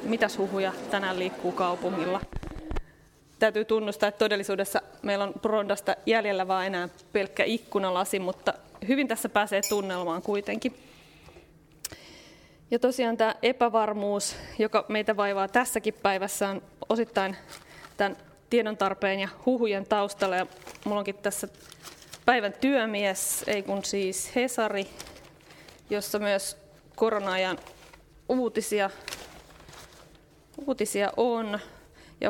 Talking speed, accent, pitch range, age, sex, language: 105 wpm, native, 190-220 Hz, 20-39, female, Finnish